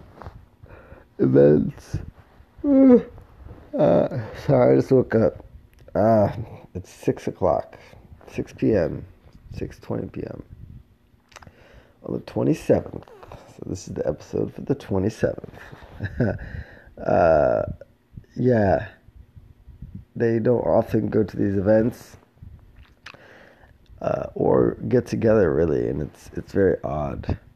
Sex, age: male, 30-49